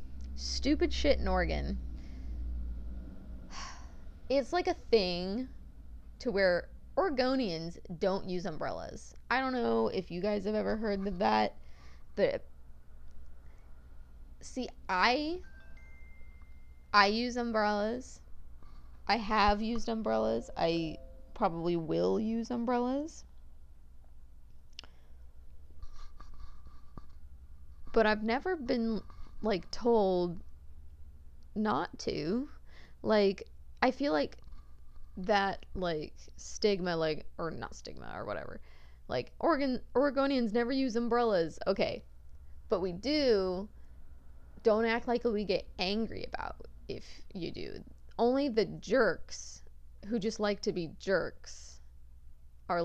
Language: English